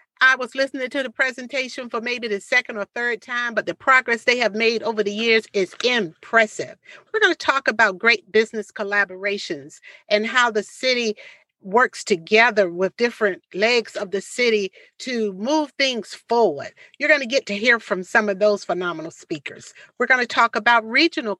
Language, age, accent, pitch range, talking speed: English, 50-69, American, 200-245 Hz, 185 wpm